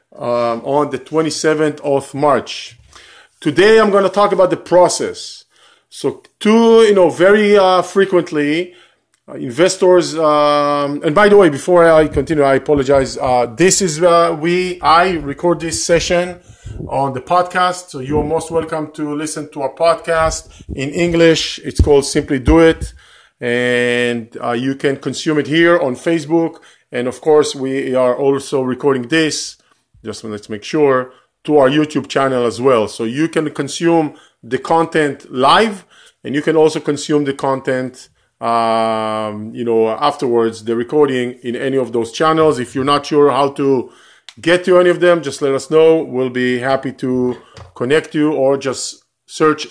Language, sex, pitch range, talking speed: English, male, 130-165 Hz, 165 wpm